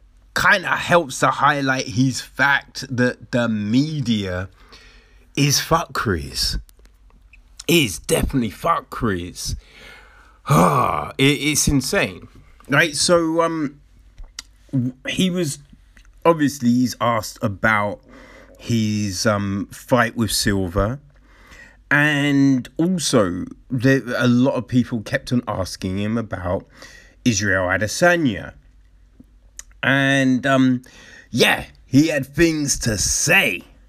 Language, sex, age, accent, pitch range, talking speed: English, male, 30-49, British, 110-150 Hz, 95 wpm